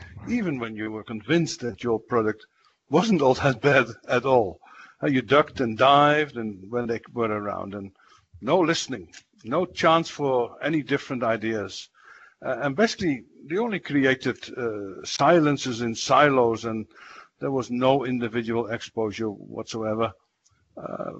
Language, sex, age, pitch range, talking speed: English, male, 60-79, 125-155 Hz, 140 wpm